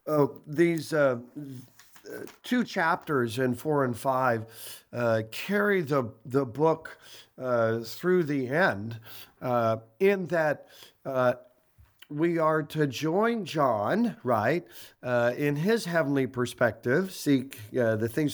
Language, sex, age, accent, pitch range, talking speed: English, male, 50-69, American, 120-170 Hz, 120 wpm